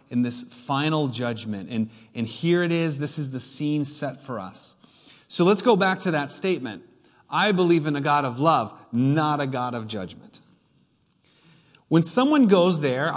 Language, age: English, 30-49